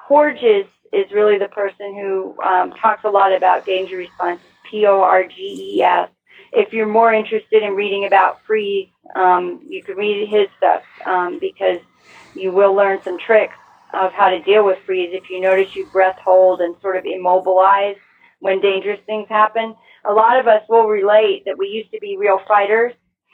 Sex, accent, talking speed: female, American, 175 wpm